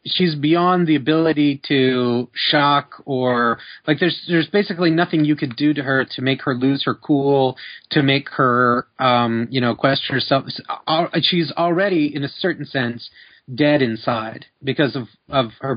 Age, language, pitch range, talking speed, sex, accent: 30-49, English, 125-150 Hz, 165 wpm, male, American